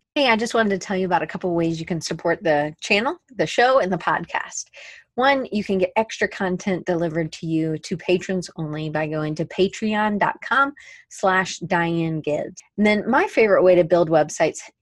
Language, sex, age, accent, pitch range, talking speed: English, female, 30-49, American, 165-210 Hz, 195 wpm